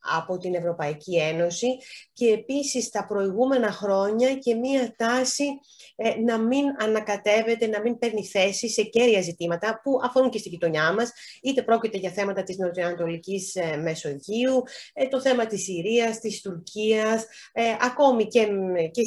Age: 30-49